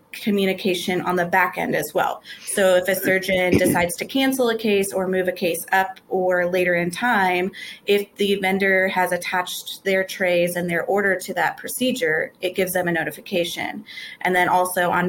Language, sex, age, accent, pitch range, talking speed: English, female, 20-39, American, 175-195 Hz, 185 wpm